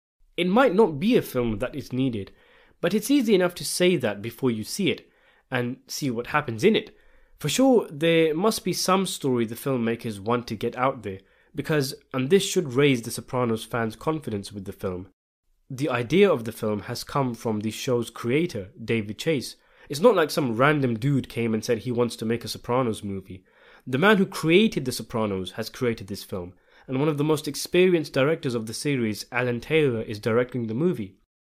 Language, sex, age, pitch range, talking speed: English, male, 20-39, 110-150 Hz, 205 wpm